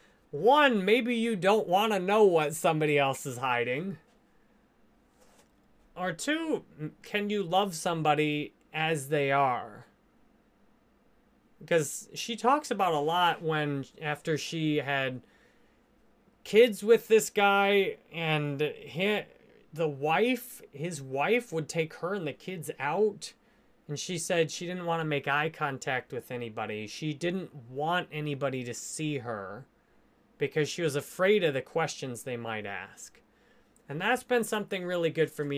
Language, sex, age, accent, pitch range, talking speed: English, male, 30-49, American, 150-225 Hz, 140 wpm